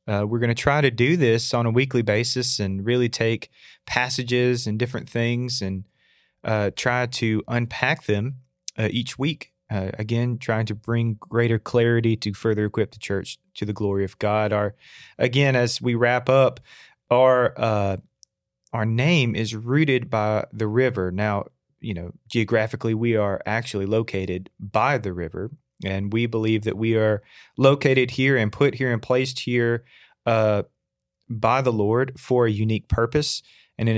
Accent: American